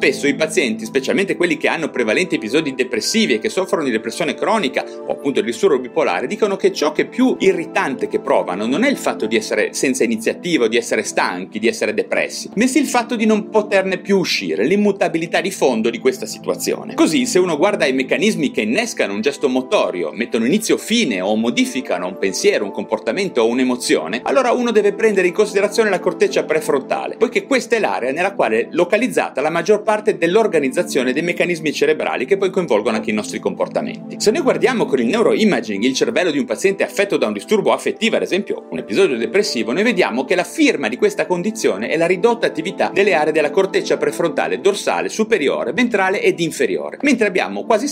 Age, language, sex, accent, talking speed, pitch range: 30-49, Italian, male, native, 200 wpm, 175-270 Hz